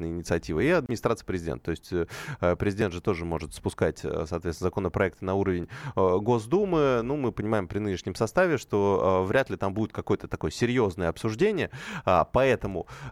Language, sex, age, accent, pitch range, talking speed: Russian, male, 20-39, native, 90-120 Hz, 145 wpm